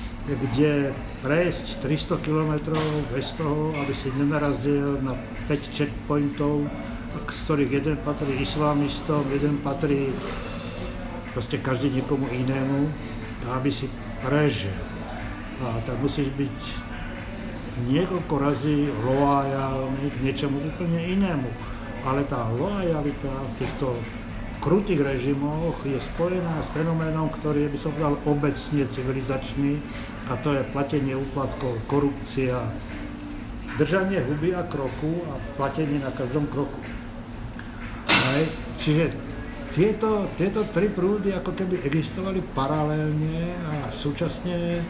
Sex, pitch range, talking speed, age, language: male, 125-155 Hz, 105 wpm, 60-79, Slovak